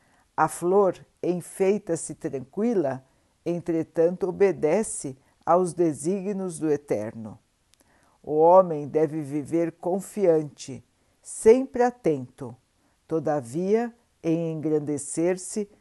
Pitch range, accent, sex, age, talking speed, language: 155-190 Hz, Brazilian, female, 60-79, 75 wpm, Portuguese